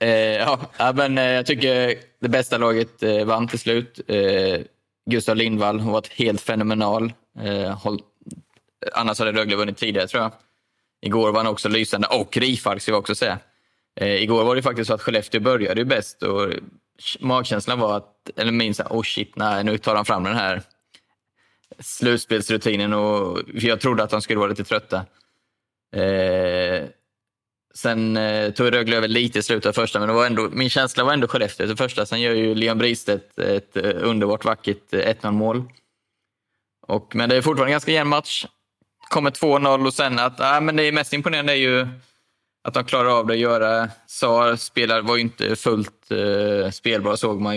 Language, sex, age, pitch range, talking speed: Swedish, male, 20-39, 105-120 Hz, 175 wpm